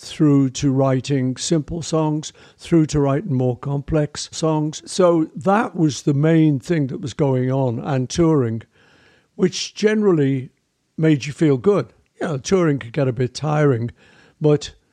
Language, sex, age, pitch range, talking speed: English, male, 60-79, 130-165 Hz, 145 wpm